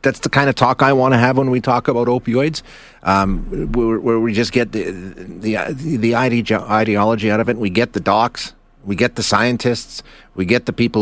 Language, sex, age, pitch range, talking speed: English, male, 30-49, 100-130 Hz, 205 wpm